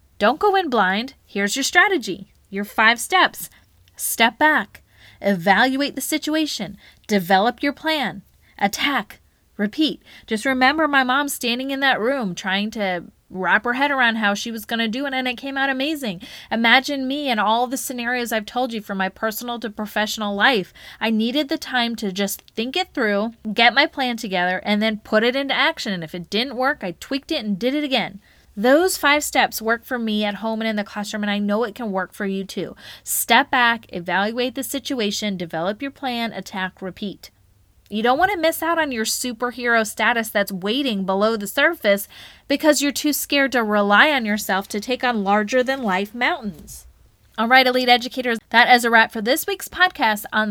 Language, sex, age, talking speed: English, female, 20-39, 195 wpm